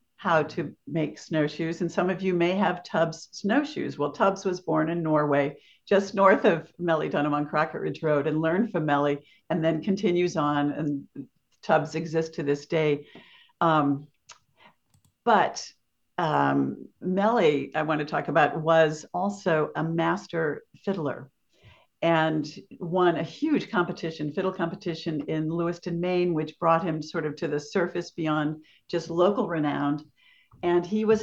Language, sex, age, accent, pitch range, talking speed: English, female, 60-79, American, 155-195 Hz, 155 wpm